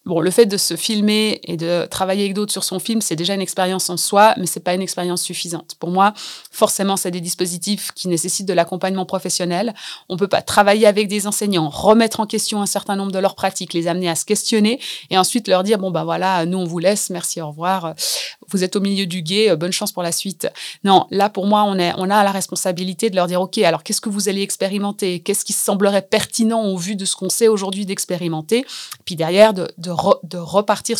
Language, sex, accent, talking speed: French, female, French, 240 wpm